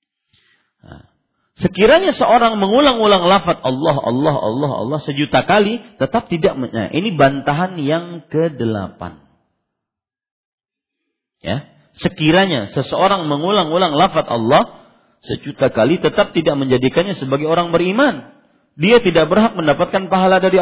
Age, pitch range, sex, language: 40-59, 110-170 Hz, male, Malay